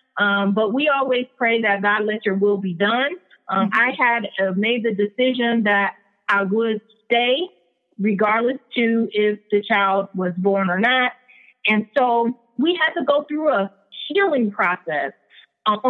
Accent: American